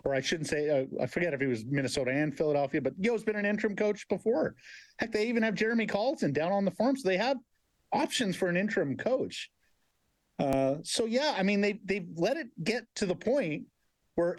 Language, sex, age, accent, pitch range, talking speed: English, male, 50-69, American, 155-215 Hz, 220 wpm